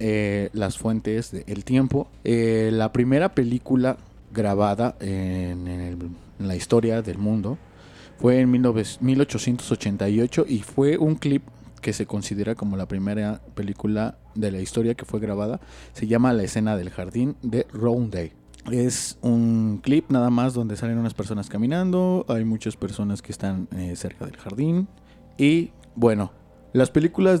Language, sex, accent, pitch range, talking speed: Spanish, male, Mexican, 100-120 Hz, 155 wpm